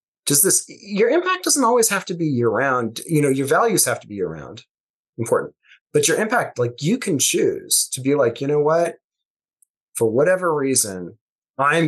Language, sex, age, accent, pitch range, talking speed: English, male, 30-49, American, 115-175 Hz, 190 wpm